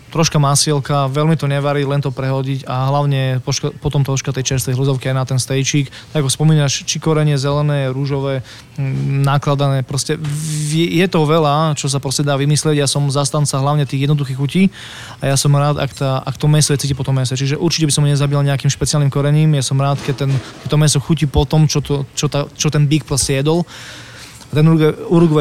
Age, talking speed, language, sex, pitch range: 20-39, 205 wpm, Slovak, male, 135-150 Hz